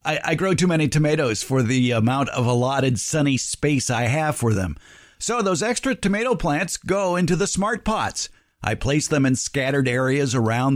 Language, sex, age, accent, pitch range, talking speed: English, male, 50-69, American, 130-185 Hz, 190 wpm